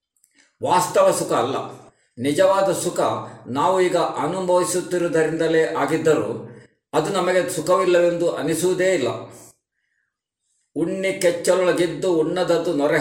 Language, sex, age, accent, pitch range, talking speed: Kannada, male, 50-69, native, 150-180 Hz, 85 wpm